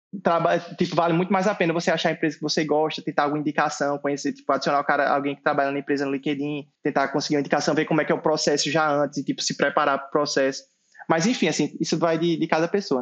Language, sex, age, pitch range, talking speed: Portuguese, male, 20-39, 150-180 Hz, 265 wpm